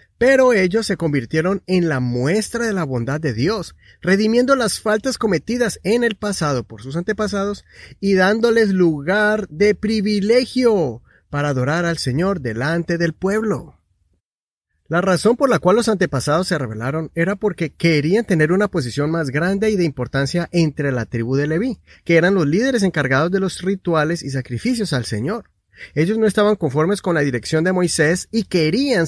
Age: 30-49